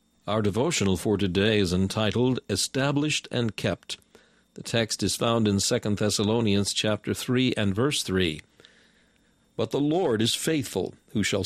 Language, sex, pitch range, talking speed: English, male, 100-125 Hz, 145 wpm